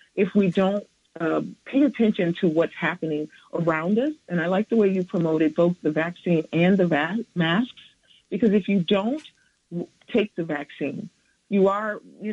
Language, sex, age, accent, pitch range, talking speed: English, female, 40-59, American, 165-215 Hz, 170 wpm